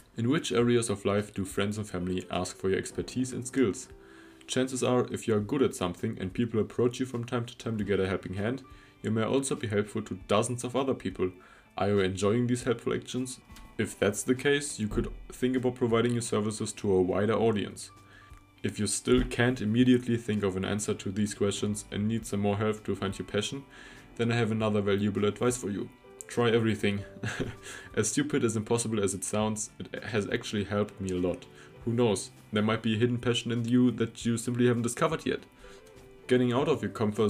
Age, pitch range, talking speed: 20-39, 100-120 Hz, 215 wpm